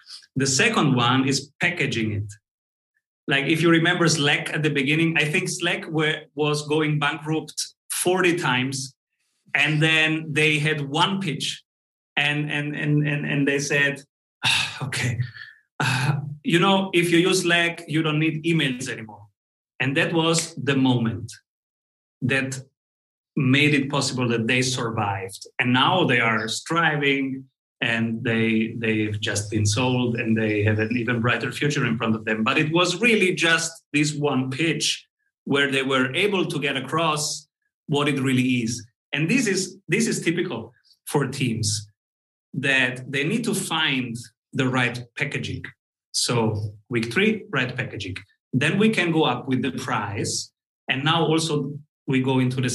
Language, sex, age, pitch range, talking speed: English, male, 30-49, 125-160 Hz, 155 wpm